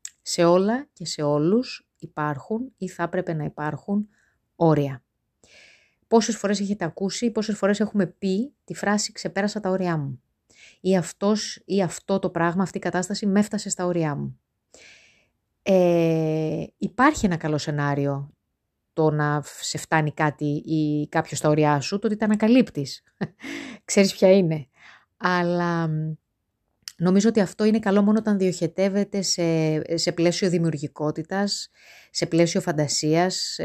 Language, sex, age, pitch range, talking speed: Greek, female, 20-39, 155-195 Hz, 140 wpm